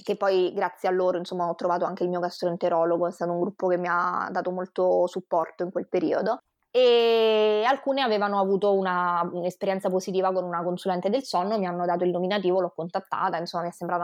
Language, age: Italian, 20-39